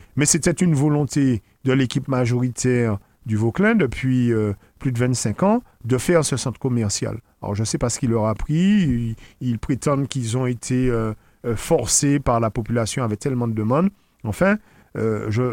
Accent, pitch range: French, 125-180 Hz